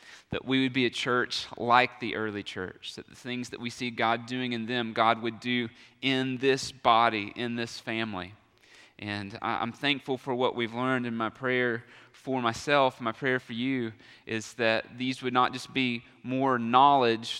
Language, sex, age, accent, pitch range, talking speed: English, male, 30-49, American, 115-130 Hz, 185 wpm